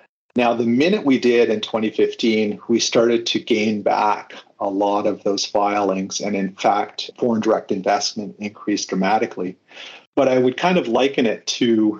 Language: English